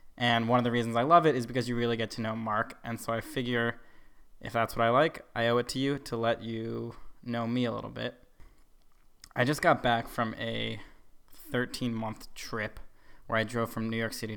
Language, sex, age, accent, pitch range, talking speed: English, male, 20-39, American, 110-125 Hz, 220 wpm